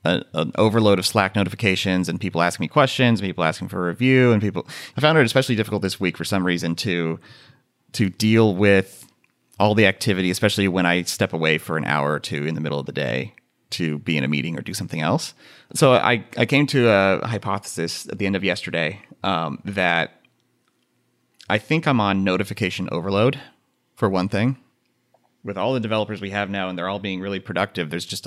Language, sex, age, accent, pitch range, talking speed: English, male, 30-49, American, 90-110 Hz, 210 wpm